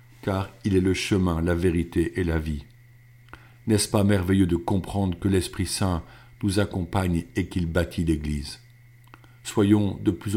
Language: French